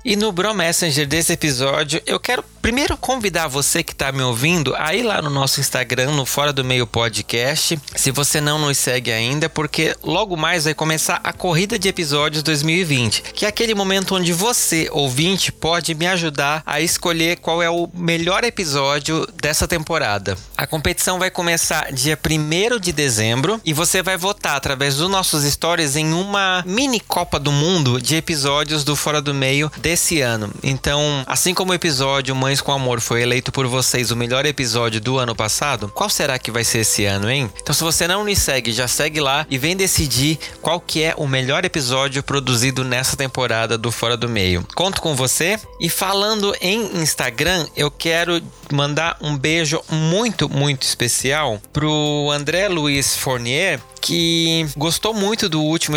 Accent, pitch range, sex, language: Brazilian, 135-170 Hz, male, Portuguese